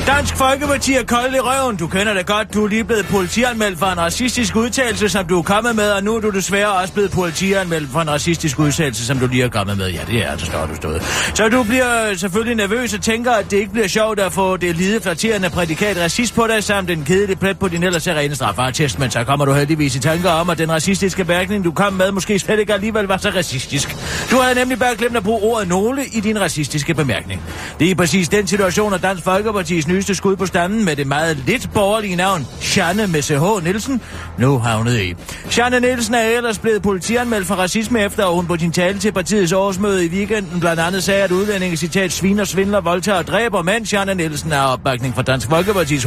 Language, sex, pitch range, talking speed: Danish, male, 155-215 Hz, 230 wpm